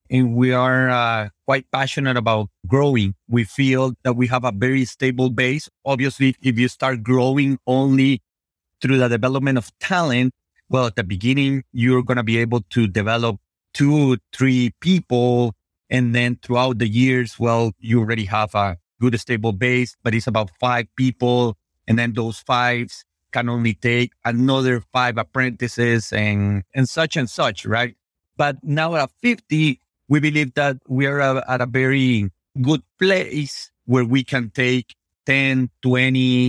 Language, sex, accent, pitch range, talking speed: English, male, Mexican, 110-130 Hz, 160 wpm